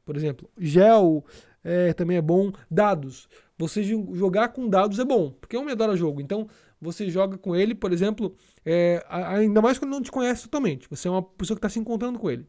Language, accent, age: Portuguese, Brazilian, 20-39